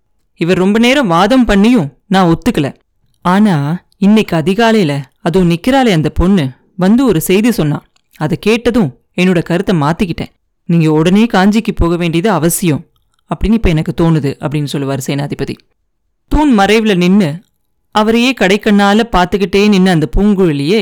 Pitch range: 165-215 Hz